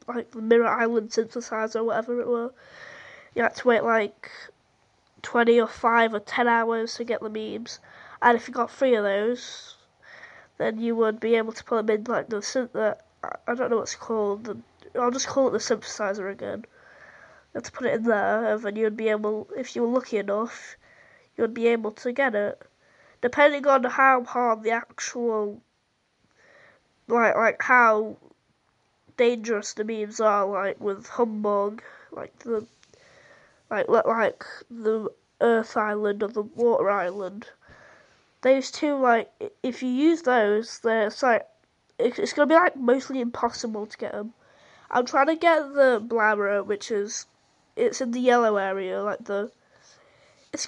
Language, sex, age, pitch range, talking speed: English, female, 20-39, 215-250 Hz, 165 wpm